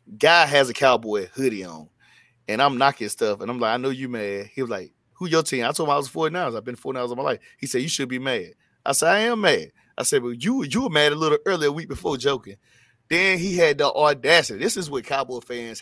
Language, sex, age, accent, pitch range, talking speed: English, male, 30-49, American, 120-150 Hz, 265 wpm